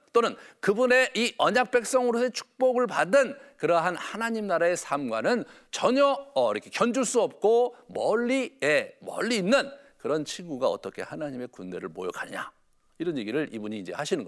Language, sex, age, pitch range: Korean, male, 50-69, 185-255 Hz